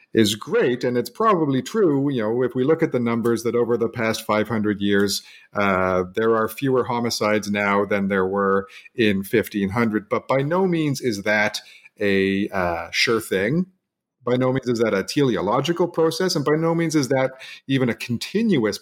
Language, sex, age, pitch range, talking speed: English, male, 40-59, 105-130 Hz, 185 wpm